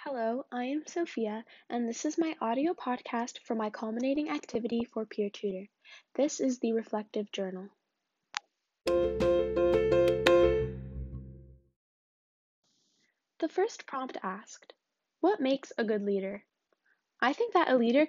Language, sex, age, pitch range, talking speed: English, female, 10-29, 210-275 Hz, 120 wpm